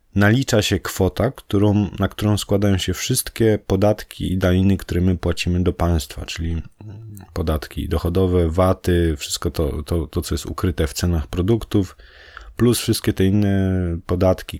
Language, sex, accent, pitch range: Polish, male, native, 85-105 Hz